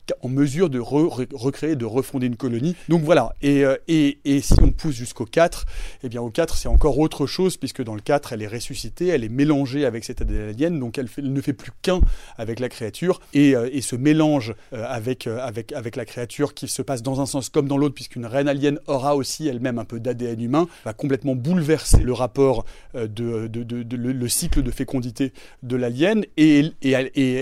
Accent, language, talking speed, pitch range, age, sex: French, French, 235 wpm, 125-155 Hz, 30-49, male